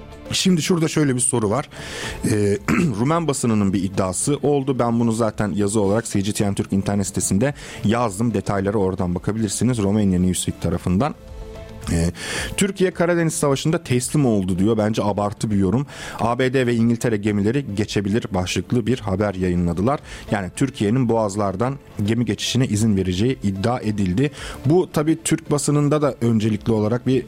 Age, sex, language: 40-59, male, Turkish